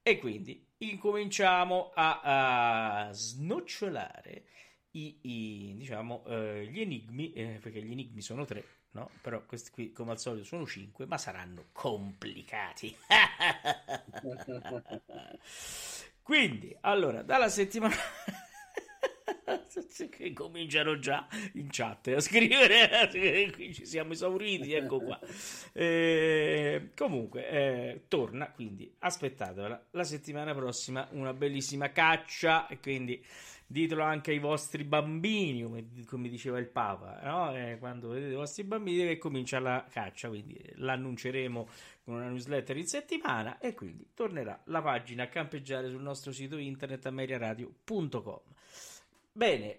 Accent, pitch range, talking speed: native, 125-175 Hz, 125 wpm